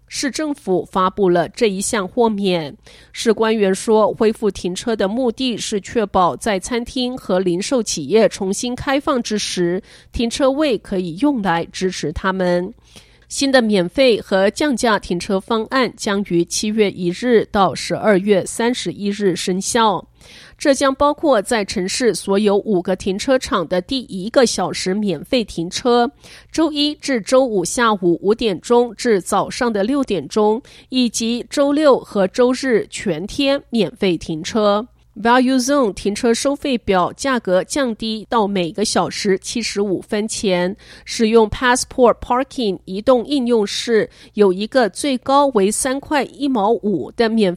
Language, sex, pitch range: Chinese, female, 190-250 Hz